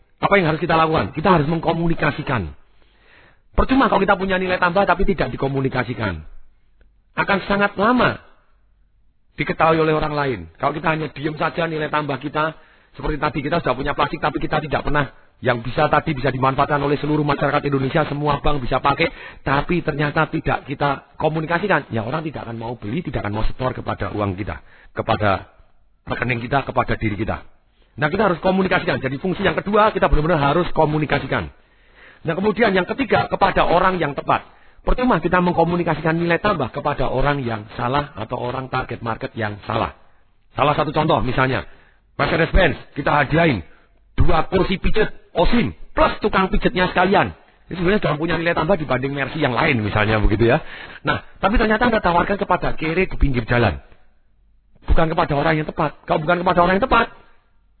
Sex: male